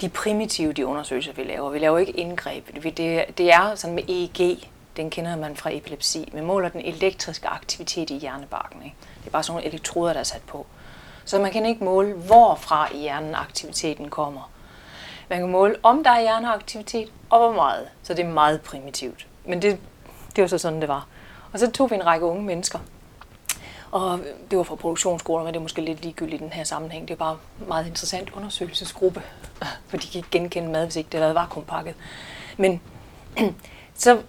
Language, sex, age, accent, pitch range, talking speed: Danish, female, 30-49, native, 160-200 Hz, 200 wpm